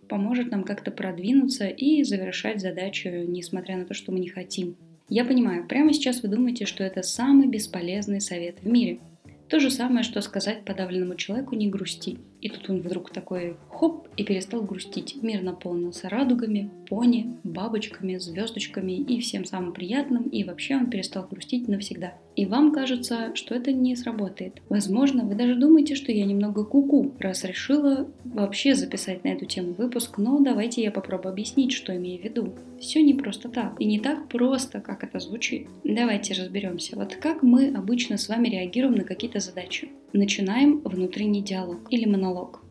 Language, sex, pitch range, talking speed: Russian, female, 190-255 Hz, 175 wpm